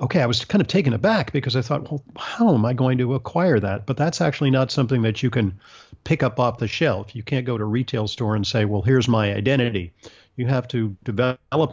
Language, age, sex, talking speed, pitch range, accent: English, 50-69, male, 245 wpm, 110-135 Hz, American